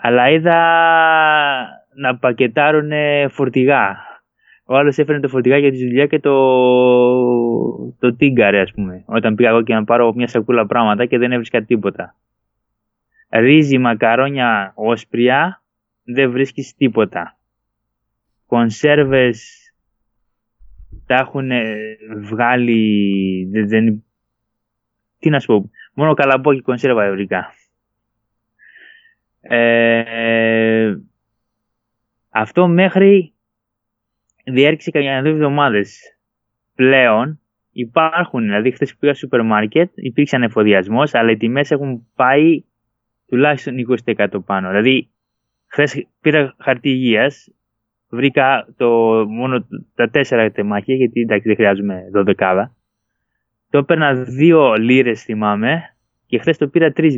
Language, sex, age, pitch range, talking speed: Greek, male, 20-39, 110-140 Hz, 105 wpm